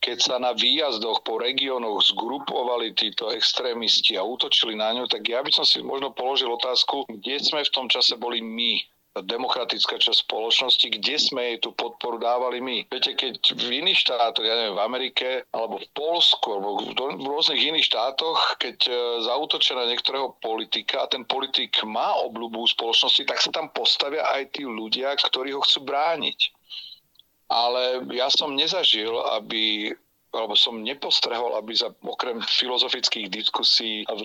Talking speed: 160 wpm